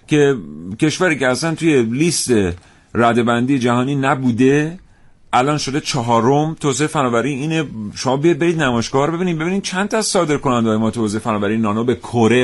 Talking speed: 150 wpm